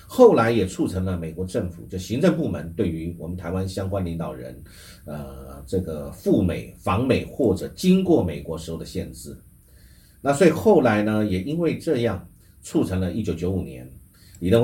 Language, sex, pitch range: Chinese, male, 85-110 Hz